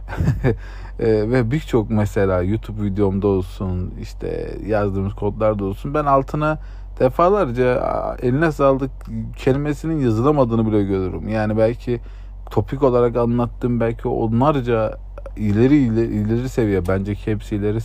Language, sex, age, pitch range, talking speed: Turkish, male, 40-59, 100-130 Hz, 120 wpm